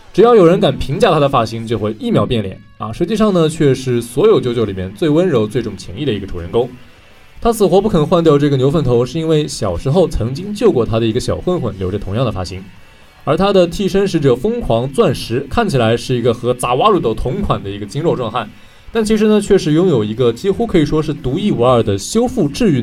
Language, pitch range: Chinese, 105-170 Hz